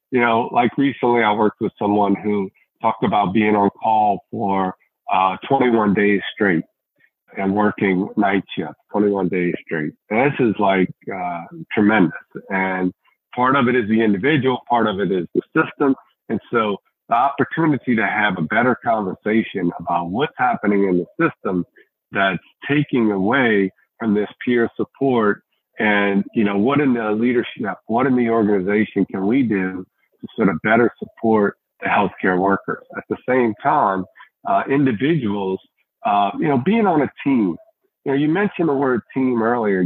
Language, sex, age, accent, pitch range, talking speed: English, male, 50-69, American, 100-125 Hz, 165 wpm